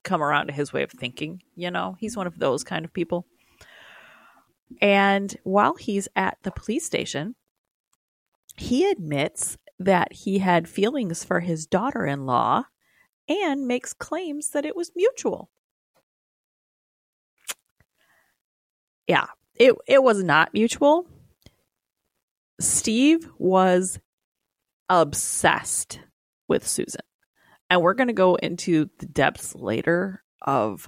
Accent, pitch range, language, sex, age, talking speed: American, 160-230 Hz, English, female, 30-49, 115 wpm